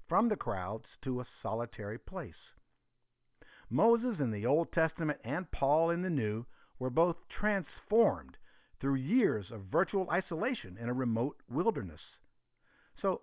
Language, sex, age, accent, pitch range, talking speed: English, male, 50-69, American, 120-160 Hz, 135 wpm